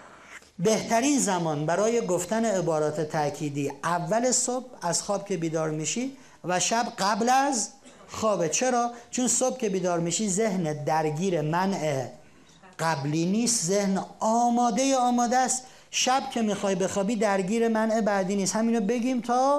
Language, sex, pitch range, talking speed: Persian, male, 155-225 Hz, 140 wpm